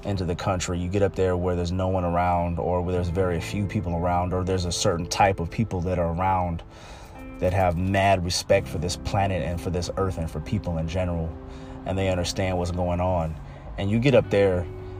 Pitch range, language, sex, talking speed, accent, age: 90-105 Hz, English, male, 225 wpm, American, 30-49